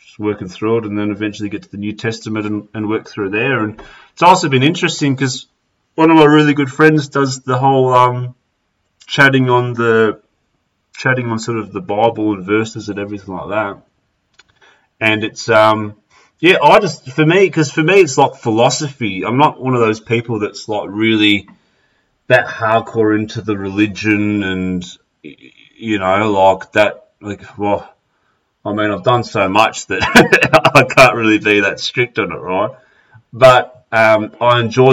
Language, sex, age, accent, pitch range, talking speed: English, male, 30-49, Australian, 100-125 Hz, 175 wpm